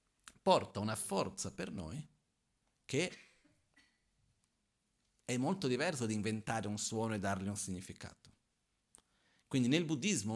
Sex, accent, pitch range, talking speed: male, native, 95-115 Hz, 120 wpm